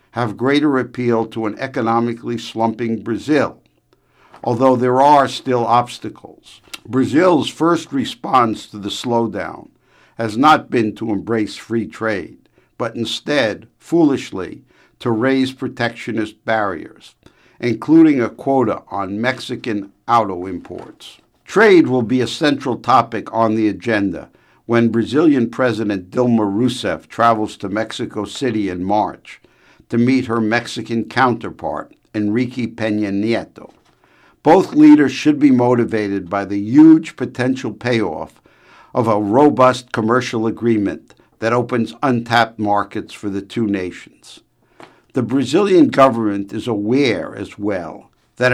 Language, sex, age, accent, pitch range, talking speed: English, male, 60-79, American, 110-130 Hz, 120 wpm